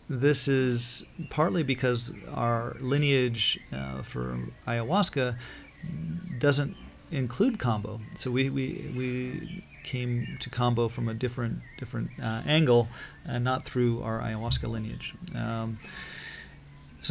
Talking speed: 120 wpm